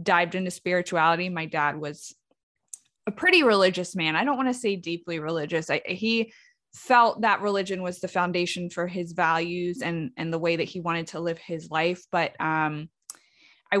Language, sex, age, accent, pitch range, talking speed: English, female, 20-39, American, 175-225 Hz, 185 wpm